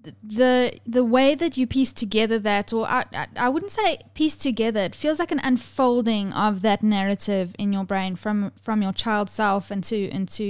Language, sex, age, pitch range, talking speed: English, female, 10-29, 195-230 Hz, 195 wpm